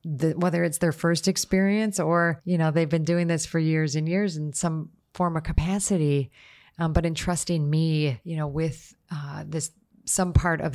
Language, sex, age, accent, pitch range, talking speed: English, female, 30-49, American, 150-170 Hz, 190 wpm